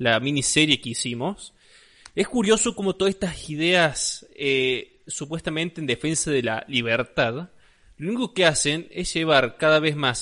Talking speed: 155 wpm